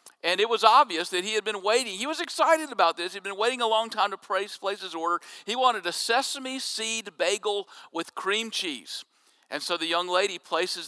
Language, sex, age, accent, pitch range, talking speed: English, male, 50-69, American, 165-220 Hz, 220 wpm